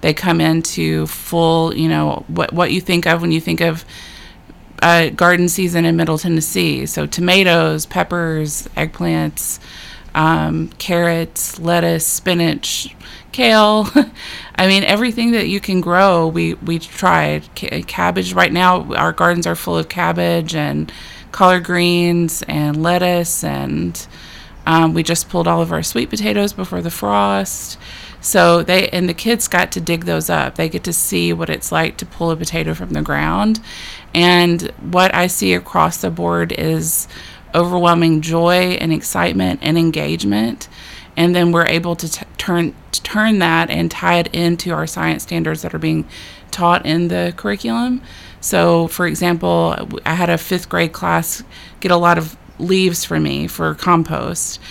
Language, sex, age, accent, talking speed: English, female, 20-39, American, 160 wpm